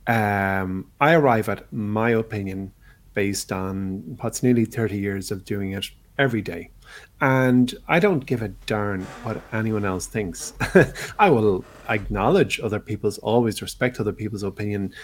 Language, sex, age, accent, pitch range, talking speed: English, male, 30-49, Irish, 95-115 Hz, 150 wpm